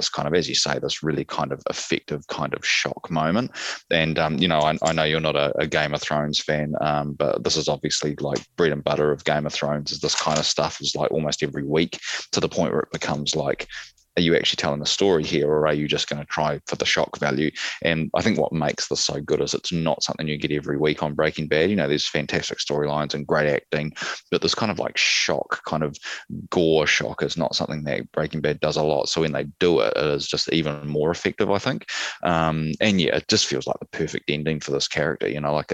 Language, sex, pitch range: English, male, 75-80 Hz